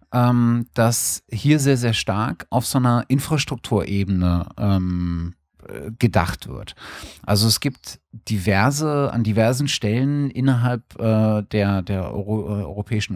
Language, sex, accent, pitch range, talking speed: German, male, German, 95-125 Hz, 115 wpm